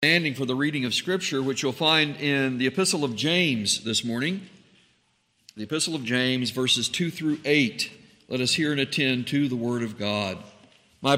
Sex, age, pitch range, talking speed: male, 50-69, 130-175 Hz, 190 wpm